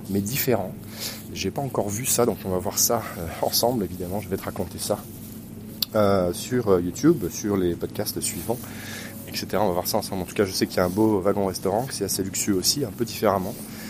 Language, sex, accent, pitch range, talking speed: French, male, French, 95-110 Hz, 220 wpm